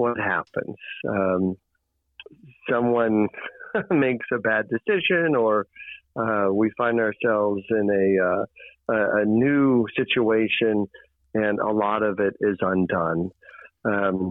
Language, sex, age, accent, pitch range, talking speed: English, male, 50-69, American, 105-135 Hz, 115 wpm